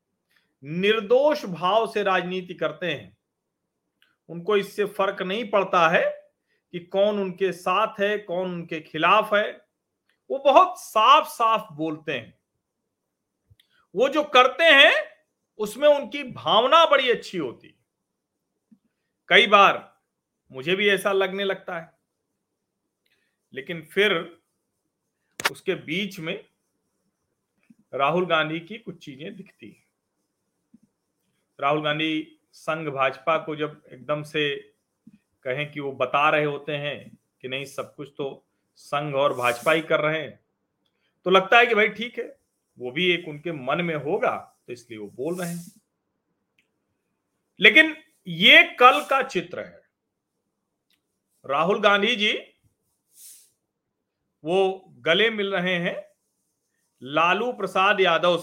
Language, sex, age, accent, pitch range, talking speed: Hindi, male, 40-59, native, 155-220 Hz, 125 wpm